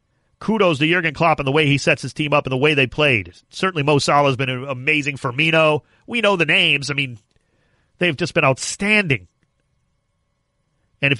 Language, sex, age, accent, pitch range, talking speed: English, male, 40-59, American, 135-170 Hz, 195 wpm